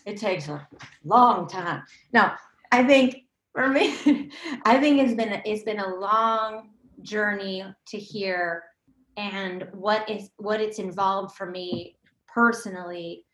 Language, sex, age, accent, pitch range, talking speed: English, female, 30-49, American, 185-210 Hz, 140 wpm